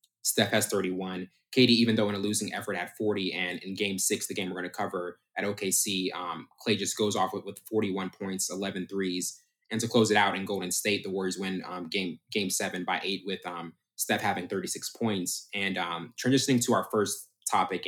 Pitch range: 95-110 Hz